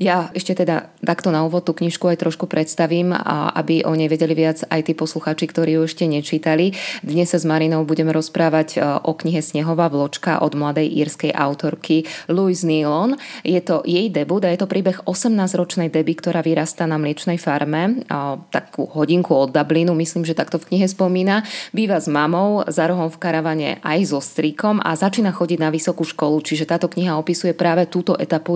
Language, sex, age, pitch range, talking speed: Slovak, female, 20-39, 155-180 Hz, 185 wpm